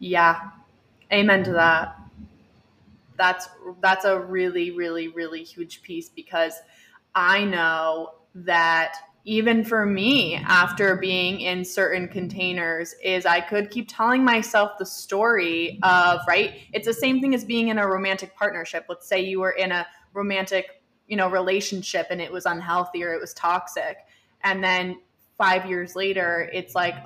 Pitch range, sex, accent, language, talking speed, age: 170-200 Hz, female, American, English, 155 wpm, 20-39